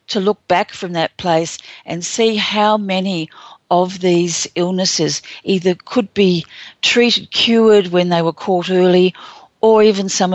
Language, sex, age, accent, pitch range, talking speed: English, female, 50-69, Australian, 160-195 Hz, 150 wpm